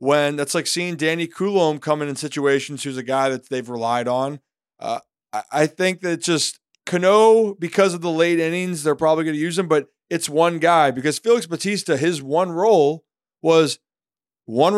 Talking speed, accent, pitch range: 180 wpm, American, 155-210 Hz